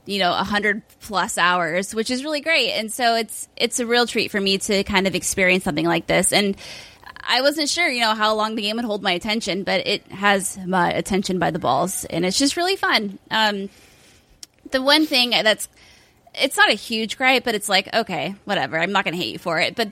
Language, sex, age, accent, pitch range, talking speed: English, female, 20-39, American, 185-235 Hz, 230 wpm